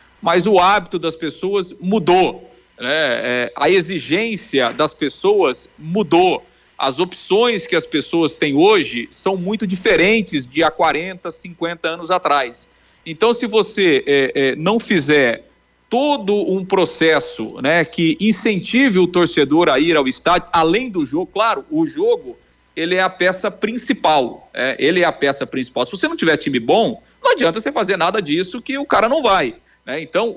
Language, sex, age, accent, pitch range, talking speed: Portuguese, male, 40-59, Brazilian, 155-225 Hz, 160 wpm